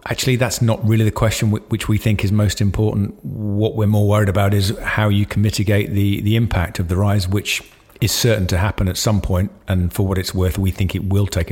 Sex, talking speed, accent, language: male, 240 wpm, British, English